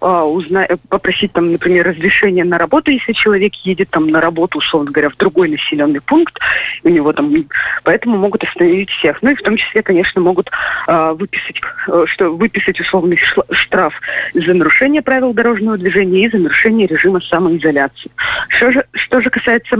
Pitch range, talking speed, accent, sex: 180-235 Hz, 155 wpm, native, female